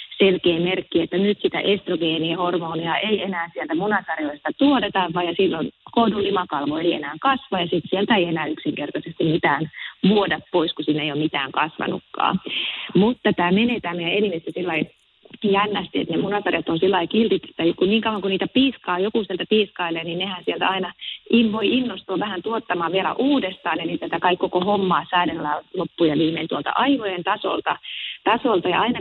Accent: native